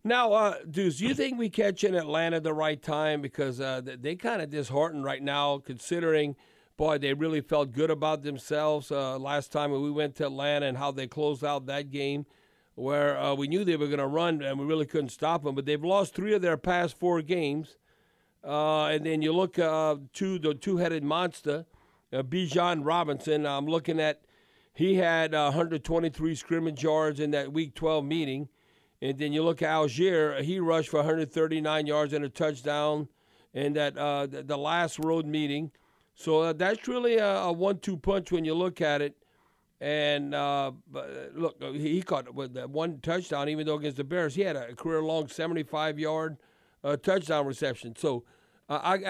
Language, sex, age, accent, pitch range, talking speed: English, male, 50-69, American, 145-170 Hz, 195 wpm